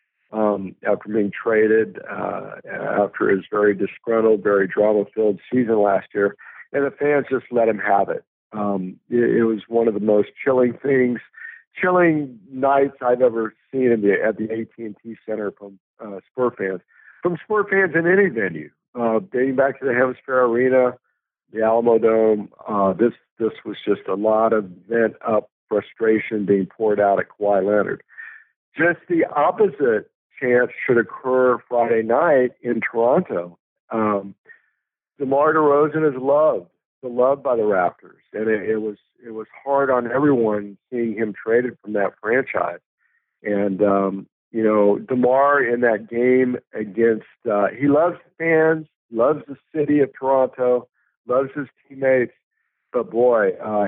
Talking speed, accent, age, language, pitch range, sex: 160 wpm, American, 50-69, English, 105-135 Hz, male